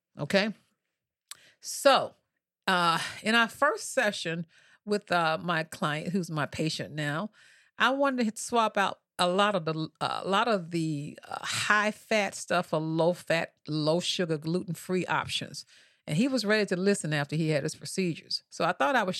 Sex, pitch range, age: female, 165-200 Hz, 40-59